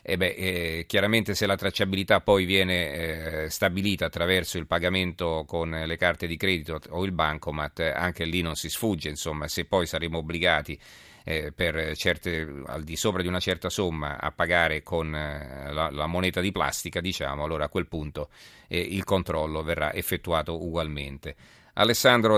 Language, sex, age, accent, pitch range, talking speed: Italian, male, 40-59, native, 85-100 Hz, 170 wpm